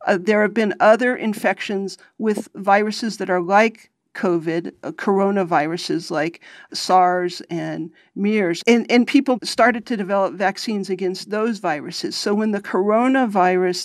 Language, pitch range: English, 180-220 Hz